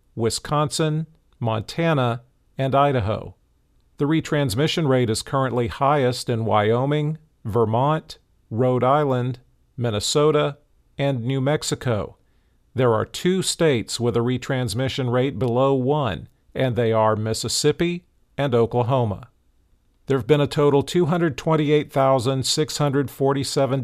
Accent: American